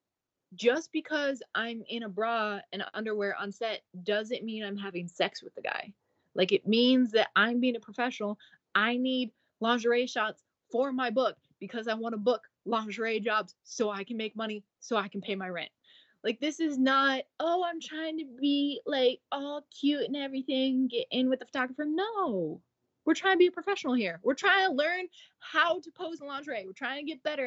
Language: English